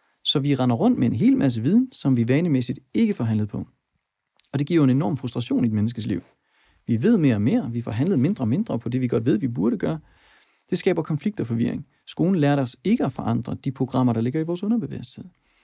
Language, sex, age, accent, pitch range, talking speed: Danish, male, 30-49, native, 120-155 Hz, 235 wpm